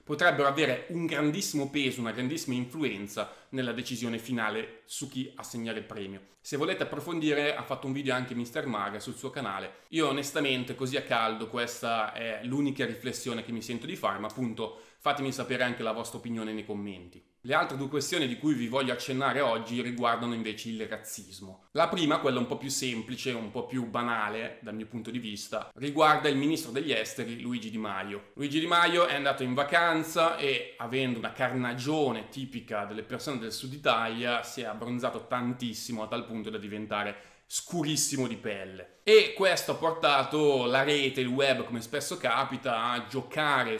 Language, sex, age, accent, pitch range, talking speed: Italian, male, 20-39, native, 115-140 Hz, 180 wpm